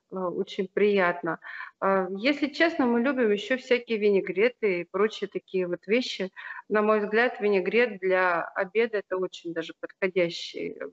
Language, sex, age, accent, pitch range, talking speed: Russian, female, 30-49, native, 195-250 Hz, 130 wpm